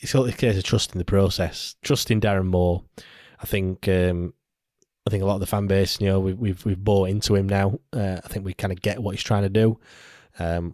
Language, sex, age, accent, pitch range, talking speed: English, male, 20-39, British, 95-110 Hz, 240 wpm